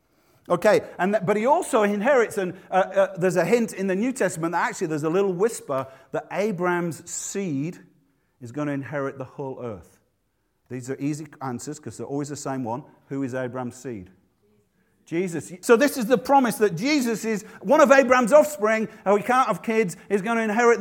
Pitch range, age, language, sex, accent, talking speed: 140-210 Hz, 50-69, English, male, British, 195 wpm